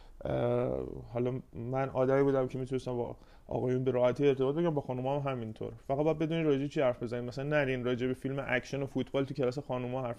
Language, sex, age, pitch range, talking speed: Persian, male, 20-39, 120-150 Hz, 220 wpm